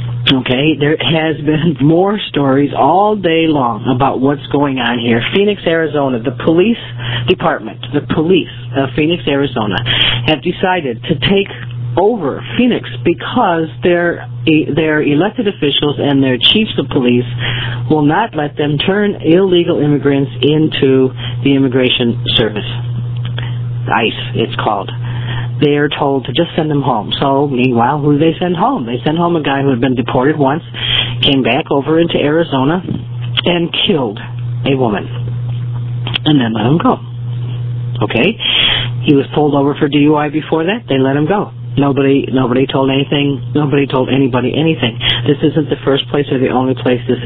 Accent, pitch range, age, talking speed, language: American, 120-150 Hz, 50-69, 155 wpm, English